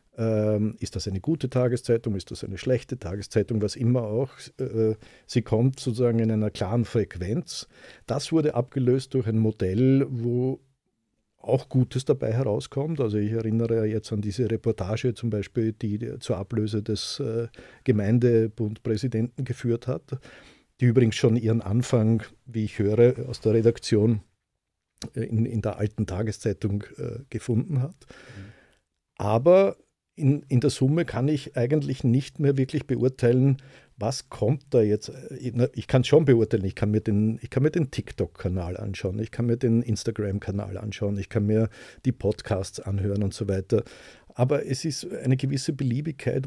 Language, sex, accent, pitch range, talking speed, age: English, male, Austrian, 110-130 Hz, 145 wpm, 50-69